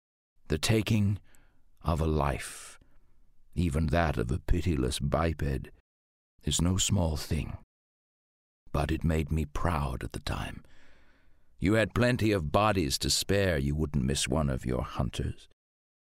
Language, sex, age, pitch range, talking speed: English, male, 60-79, 75-95 Hz, 140 wpm